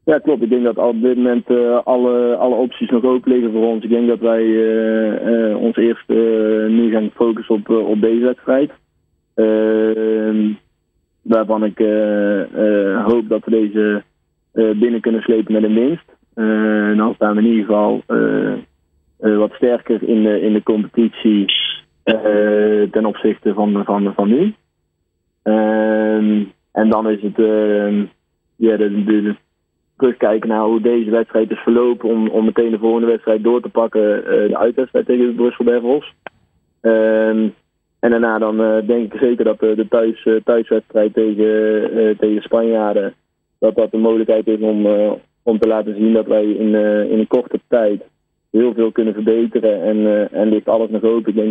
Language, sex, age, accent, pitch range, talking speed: Dutch, male, 20-39, Dutch, 105-115 Hz, 165 wpm